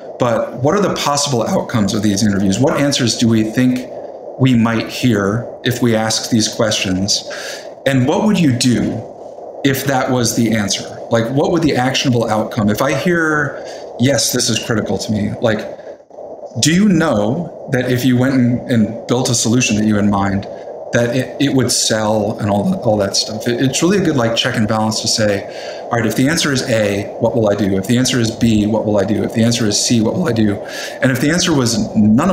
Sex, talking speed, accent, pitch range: male, 220 wpm, American, 110-130 Hz